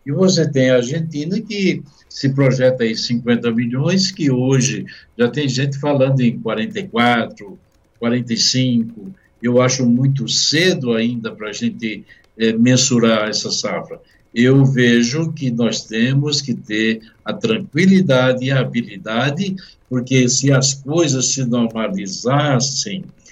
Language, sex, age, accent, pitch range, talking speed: Portuguese, male, 60-79, Brazilian, 125-155 Hz, 125 wpm